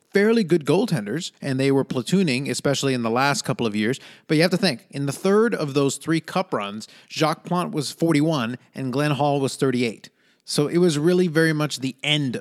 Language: English